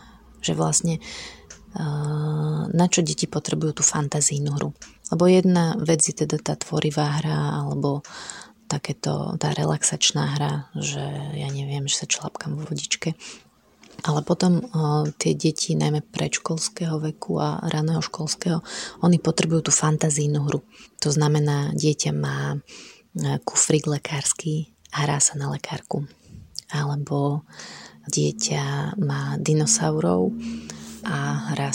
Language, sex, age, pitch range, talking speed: Slovak, female, 30-49, 140-160 Hz, 115 wpm